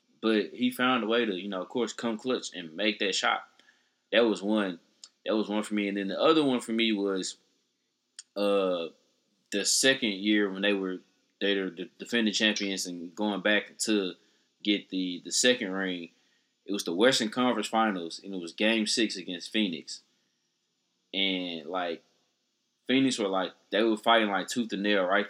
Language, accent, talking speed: English, American, 185 wpm